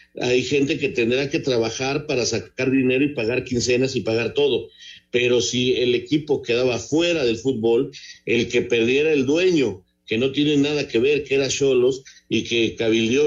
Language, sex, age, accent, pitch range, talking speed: Spanish, male, 50-69, Mexican, 120-155 Hz, 180 wpm